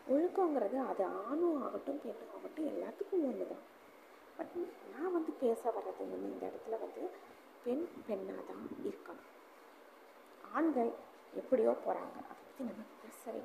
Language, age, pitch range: Tamil, 20-39, 220-315 Hz